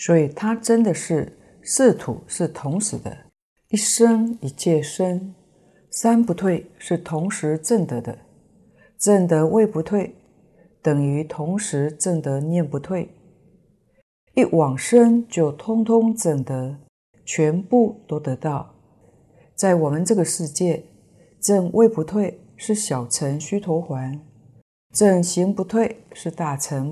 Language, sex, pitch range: Chinese, female, 150-195 Hz